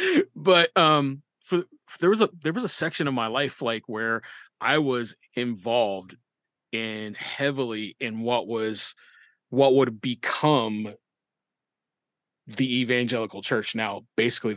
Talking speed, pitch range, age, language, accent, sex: 130 wpm, 115-140 Hz, 30-49, English, American, male